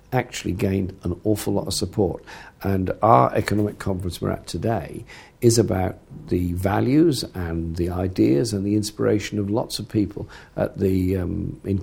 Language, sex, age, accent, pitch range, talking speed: English, male, 50-69, British, 95-115 Hz, 160 wpm